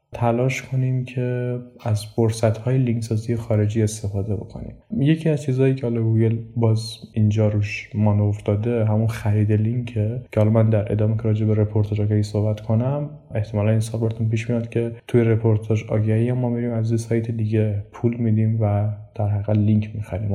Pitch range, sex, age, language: 105-120 Hz, male, 20-39, Persian